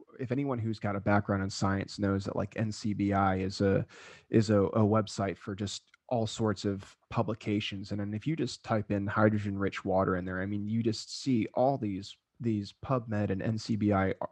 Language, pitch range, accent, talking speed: English, 100-120 Hz, American, 195 wpm